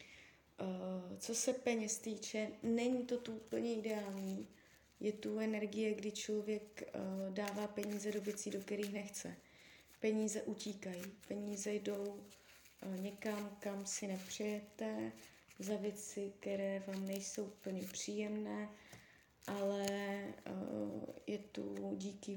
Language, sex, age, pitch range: Czech, female, 20-39, 190-210 Hz